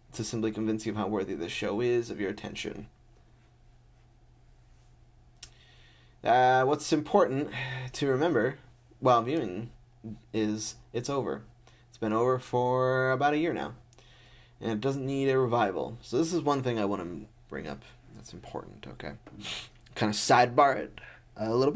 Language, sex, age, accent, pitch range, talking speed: English, male, 20-39, American, 115-130 Hz, 155 wpm